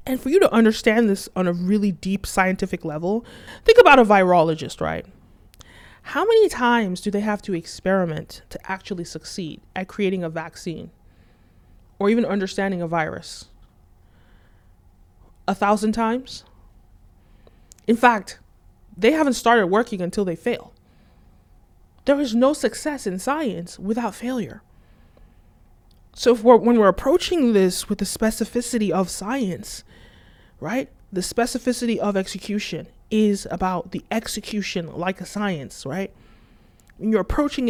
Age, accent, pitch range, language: 20-39, American, 165-220 Hz, English